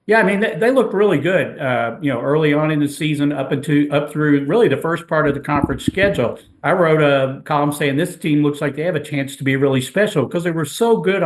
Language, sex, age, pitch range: English, male, 50-69, 130-155 Hz